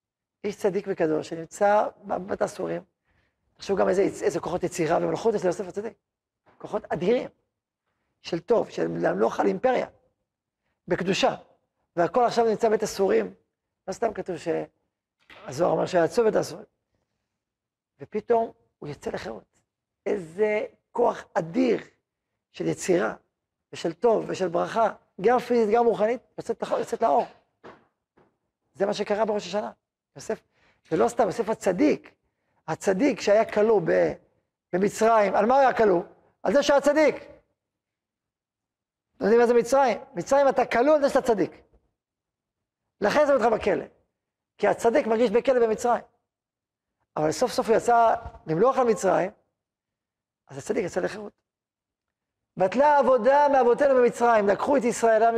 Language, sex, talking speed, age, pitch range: Hebrew, male, 135 wpm, 40-59, 195-245 Hz